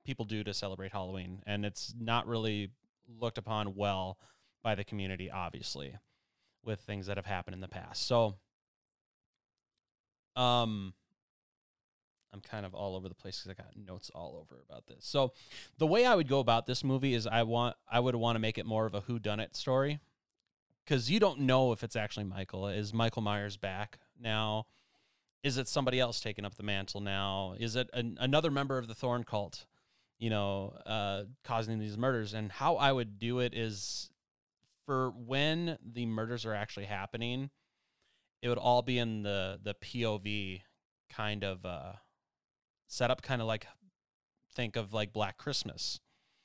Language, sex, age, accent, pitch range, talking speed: English, male, 30-49, American, 100-125 Hz, 175 wpm